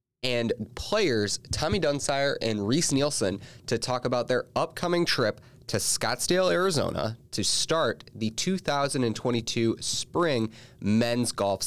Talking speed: 120 wpm